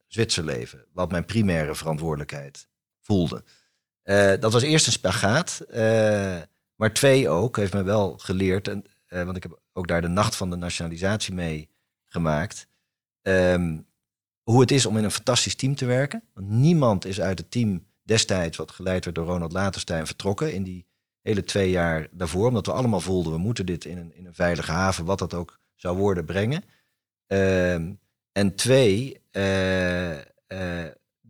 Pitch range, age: 85-105 Hz, 40-59